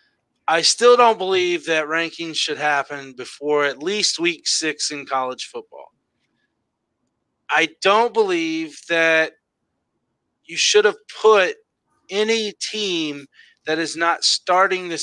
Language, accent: English, American